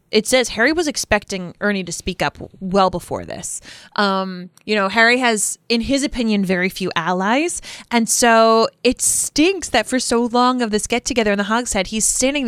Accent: American